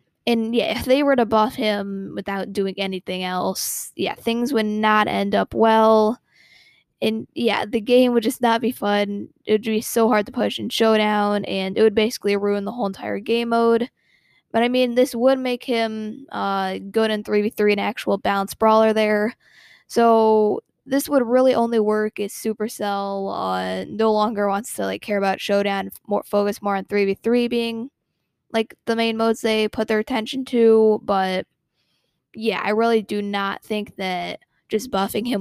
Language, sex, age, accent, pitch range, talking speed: English, female, 10-29, American, 205-230 Hz, 180 wpm